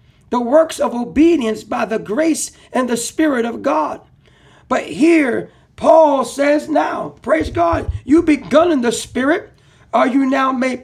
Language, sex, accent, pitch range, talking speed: English, male, American, 235-315 Hz, 155 wpm